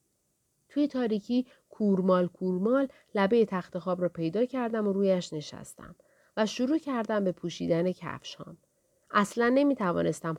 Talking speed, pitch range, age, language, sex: 120 wpm, 170-255 Hz, 40-59, Persian, female